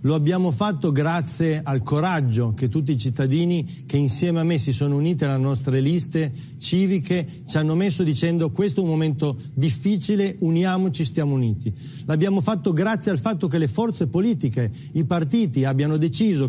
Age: 40-59